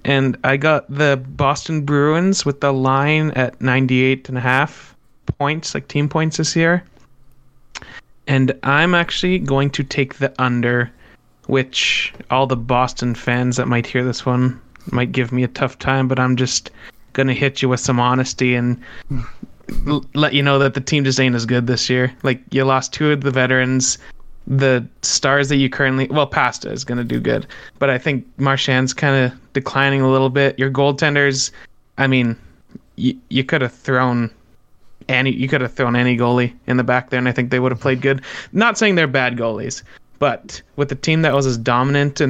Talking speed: 190 wpm